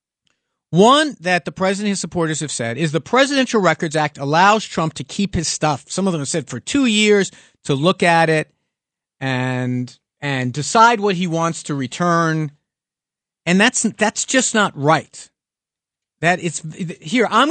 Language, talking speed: English, 170 wpm